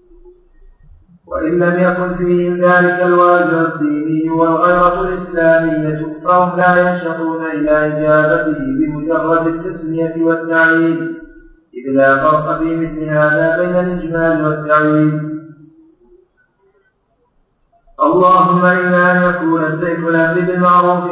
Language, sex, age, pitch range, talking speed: Arabic, male, 50-69, 155-180 Hz, 90 wpm